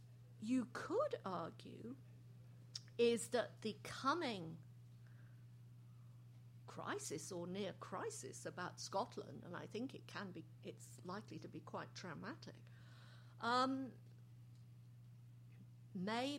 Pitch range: 120-175 Hz